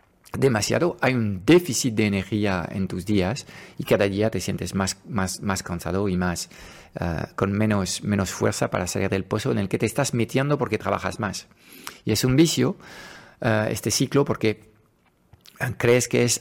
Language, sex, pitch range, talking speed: Spanish, male, 100-120 Hz, 185 wpm